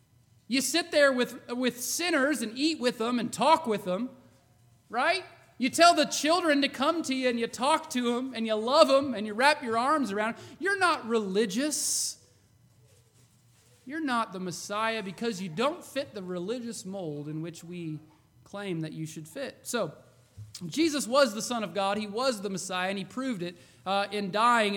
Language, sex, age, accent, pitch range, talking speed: English, male, 30-49, American, 180-270 Hz, 190 wpm